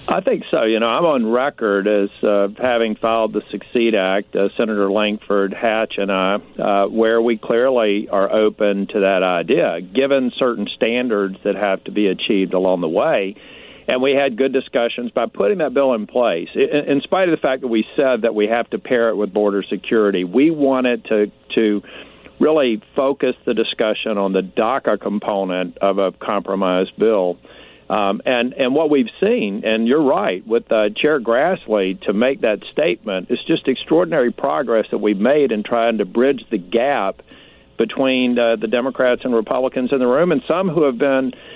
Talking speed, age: 185 wpm, 50-69